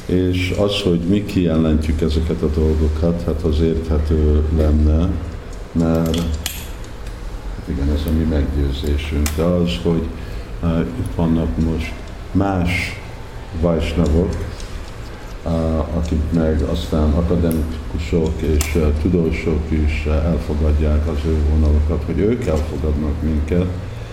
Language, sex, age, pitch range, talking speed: Hungarian, male, 50-69, 75-85 Hz, 100 wpm